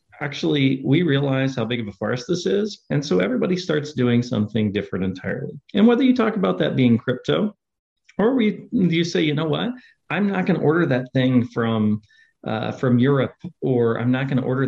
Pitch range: 120-180 Hz